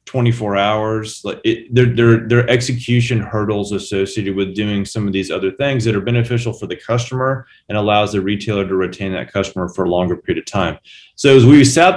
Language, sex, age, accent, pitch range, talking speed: English, male, 30-49, American, 100-120 Hz, 205 wpm